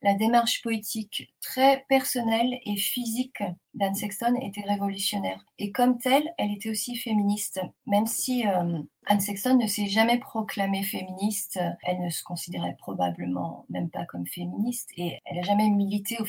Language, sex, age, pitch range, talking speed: French, female, 40-59, 180-215 Hz, 160 wpm